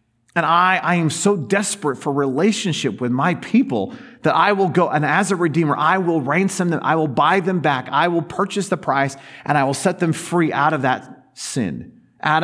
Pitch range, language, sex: 120-160 Hz, English, male